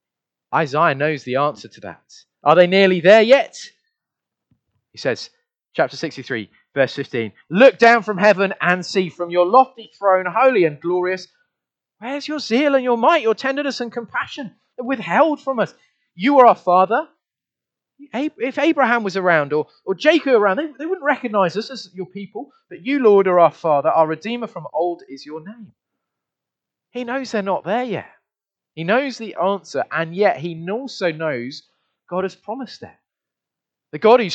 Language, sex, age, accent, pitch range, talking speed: English, male, 30-49, British, 165-260 Hz, 170 wpm